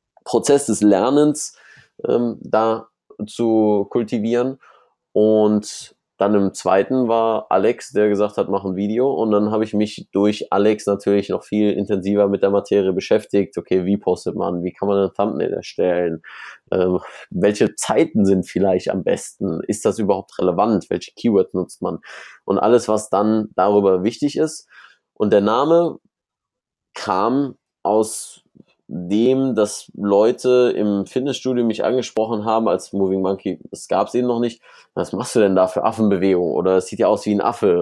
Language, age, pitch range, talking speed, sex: German, 20-39, 100-115 Hz, 165 wpm, male